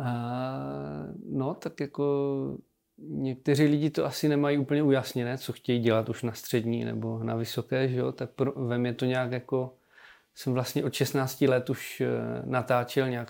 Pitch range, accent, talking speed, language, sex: 120-140 Hz, native, 165 wpm, Czech, male